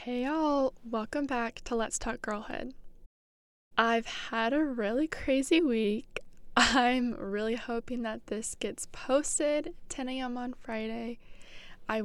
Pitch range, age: 205-255 Hz, 10-29